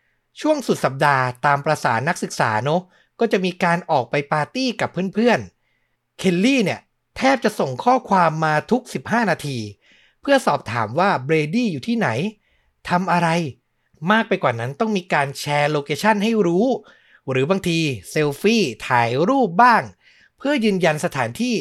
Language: Thai